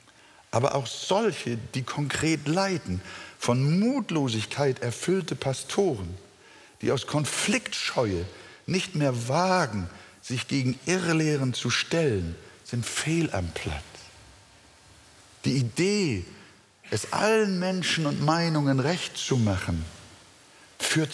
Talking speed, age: 100 wpm, 60-79